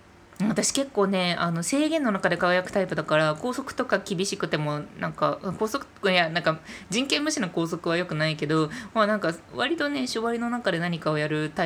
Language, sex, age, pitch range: Japanese, female, 20-39, 150-210 Hz